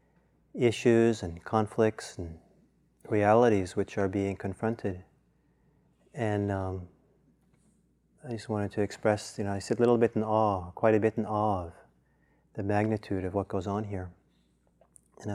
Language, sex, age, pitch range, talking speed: English, male, 30-49, 100-120 Hz, 155 wpm